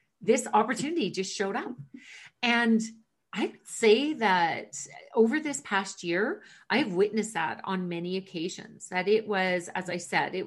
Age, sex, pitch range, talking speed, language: 40-59, female, 180-225 Hz, 150 wpm, English